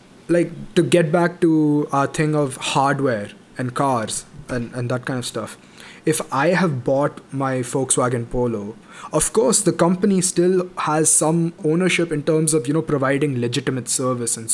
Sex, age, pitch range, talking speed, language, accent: male, 20-39, 130-165 Hz, 170 wpm, English, Indian